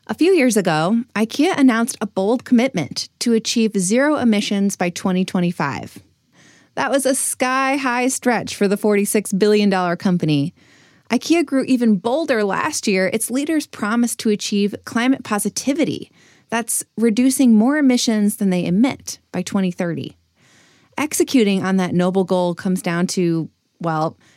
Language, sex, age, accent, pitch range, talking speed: English, female, 20-39, American, 185-250 Hz, 140 wpm